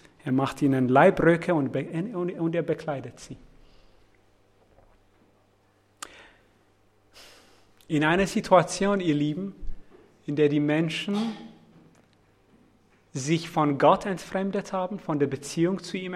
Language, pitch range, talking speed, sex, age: English, 115-180 Hz, 105 wpm, male, 30-49